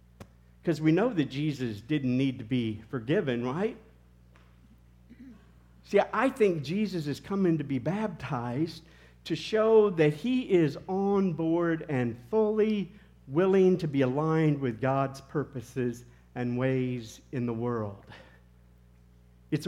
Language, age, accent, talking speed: English, 50-69, American, 130 wpm